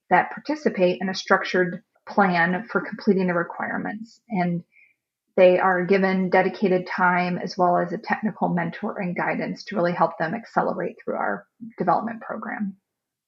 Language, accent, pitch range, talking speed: English, American, 180-210 Hz, 150 wpm